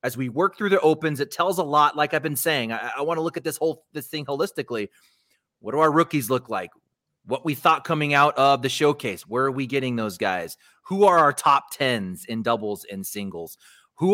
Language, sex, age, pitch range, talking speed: English, male, 30-49, 130-175 Hz, 225 wpm